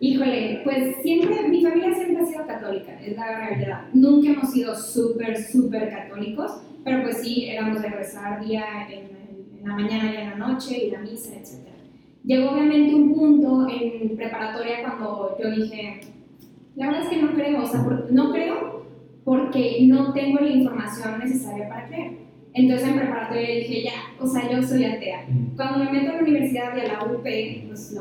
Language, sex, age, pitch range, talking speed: Spanish, female, 10-29, 225-265 Hz, 190 wpm